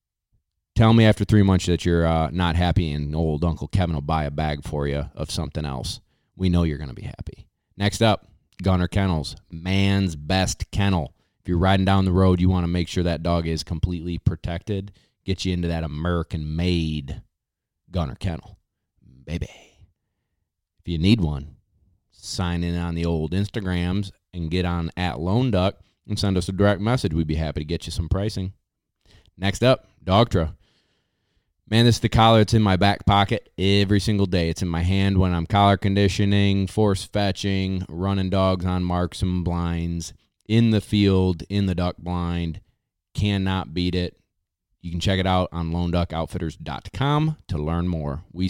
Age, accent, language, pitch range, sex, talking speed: 30-49, American, English, 85-100 Hz, male, 175 wpm